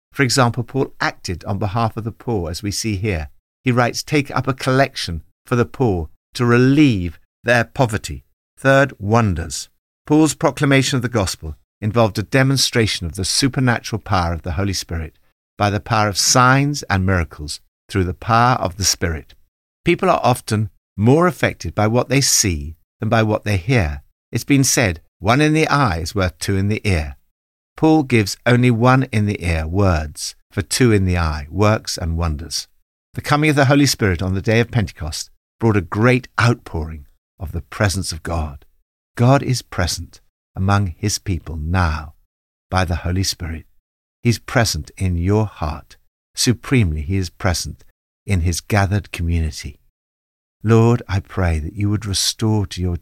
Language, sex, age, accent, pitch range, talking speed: English, male, 60-79, British, 80-120 Hz, 175 wpm